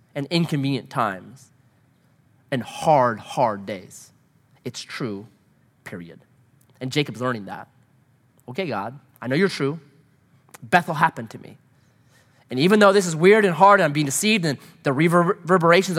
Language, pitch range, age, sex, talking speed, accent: English, 125-165 Hz, 30-49, male, 145 wpm, American